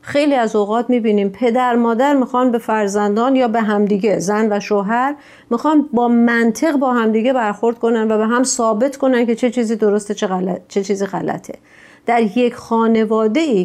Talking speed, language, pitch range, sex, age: 175 wpm, Persian, 210-250 Hz, female, 40-59